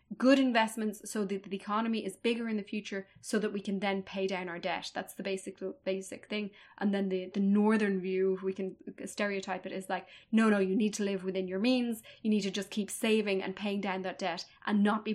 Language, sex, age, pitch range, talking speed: English, female, 20-39, 195-235 Hz, 245 wpm